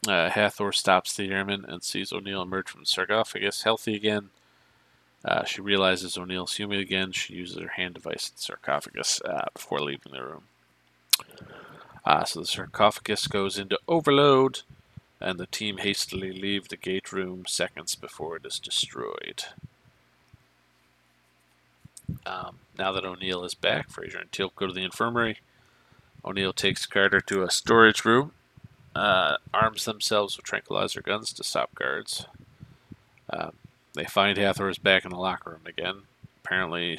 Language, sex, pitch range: English, male, 90-105 Hz